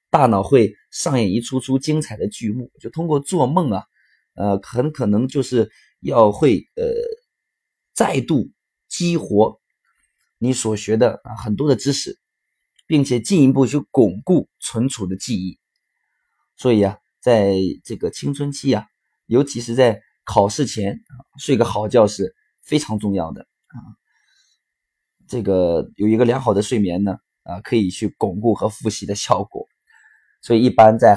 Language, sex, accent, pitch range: Chinese, male, native, 105-135 Hz